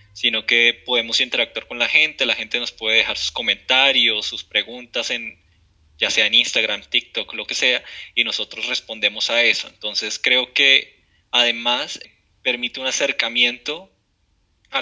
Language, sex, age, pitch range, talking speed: Spanish, male, 20-39, 105-120 Hz, 155 wpm